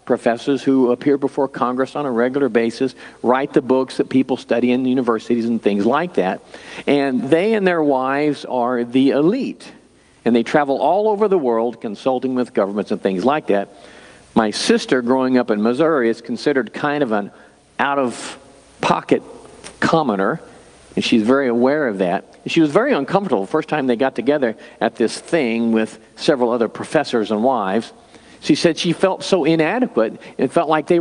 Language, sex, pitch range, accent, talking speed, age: English, male, 125-195 Hz, American, 175 wpm, 50-69